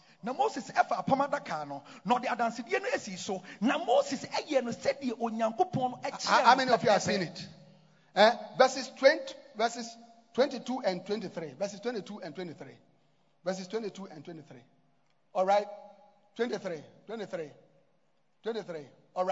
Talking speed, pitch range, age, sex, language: 120 wpm, 190-265 Hz, 40-59, male, English